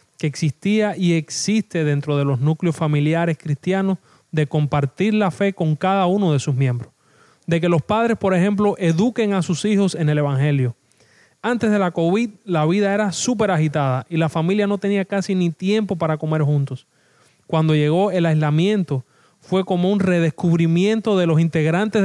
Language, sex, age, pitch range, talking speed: Spanish, male, 30-49, 150-195 Hz, 175 wpm